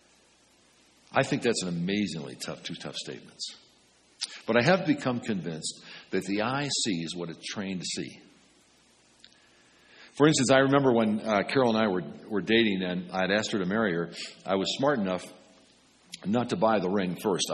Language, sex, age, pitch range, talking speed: English, male, 60-79, 95-130 Hz, 180 wpm